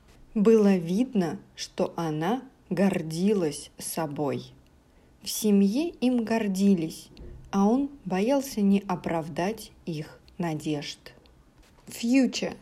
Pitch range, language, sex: 170-210 Hz, English, female